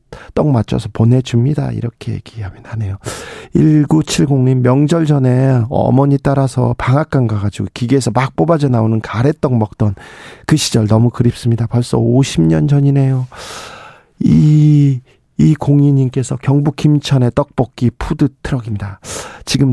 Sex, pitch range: male, 115-145 Hz